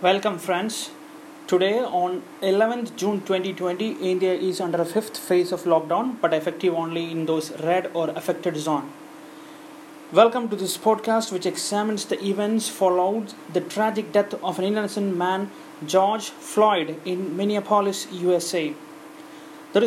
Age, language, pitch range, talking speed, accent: 30-49, Malayalam, 190-250 Hz, 140 wpm, native